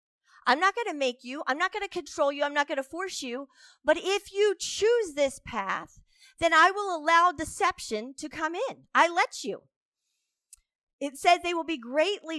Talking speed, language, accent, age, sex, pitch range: 200 wpm, English, American, 40-59, female, 255-345 Hz